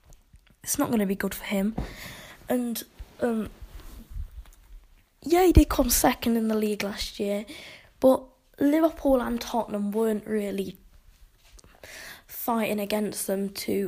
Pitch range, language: 195-230 Hz, English